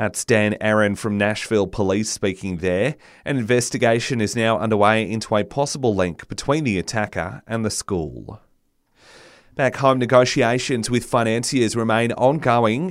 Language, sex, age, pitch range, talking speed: English, male, 30-49, 105-125 Hz, 135 wpm